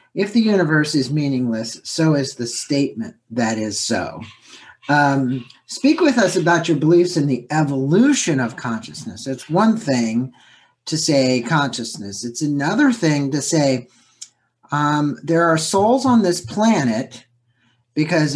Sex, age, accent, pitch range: male, 50-69, American, 120-150 Hz